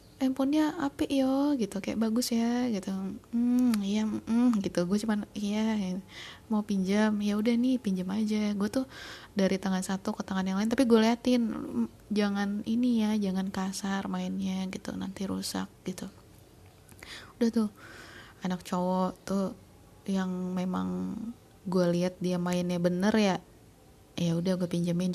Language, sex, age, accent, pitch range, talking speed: Indonesian, female, 20-39, native, 180-215 Hz, 145 wpm